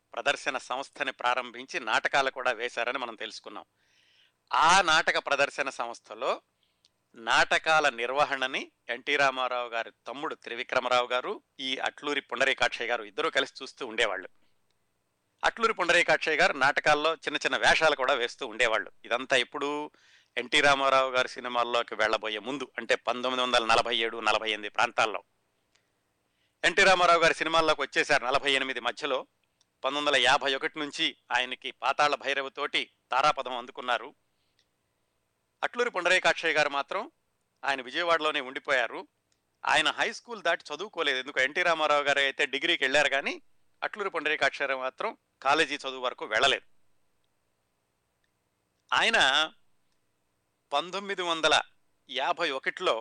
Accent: native